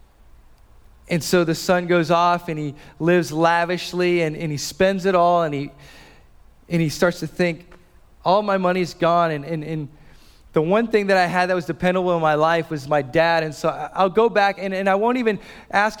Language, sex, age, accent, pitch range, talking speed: English, male, 20-39, American, 140-190 Hz, 210 wpm